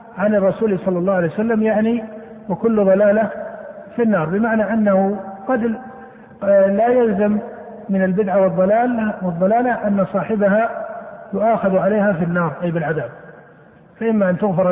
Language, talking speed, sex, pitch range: Arabic, 120 wpm, male, 195-230 Hz